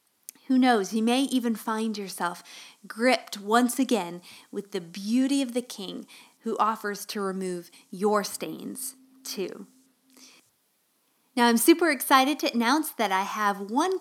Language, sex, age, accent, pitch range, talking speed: English, female, 20-39, American, 205-260 Hz, 140 wpm